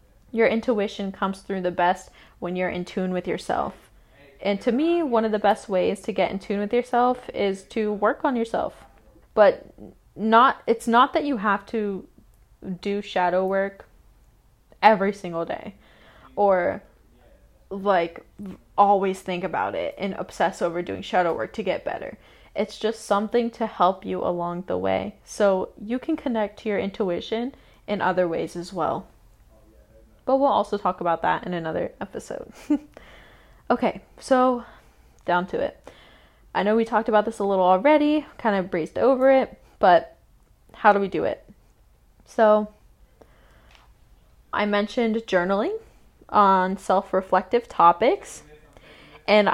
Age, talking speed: 20-39, 150 wpm